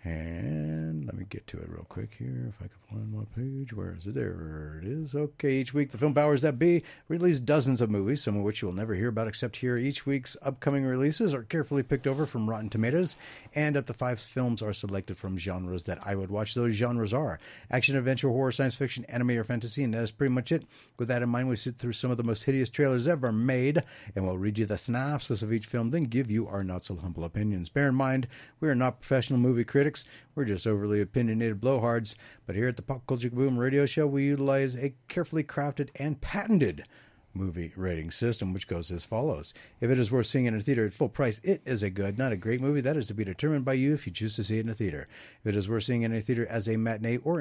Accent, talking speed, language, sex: American, 255 wpm, English, male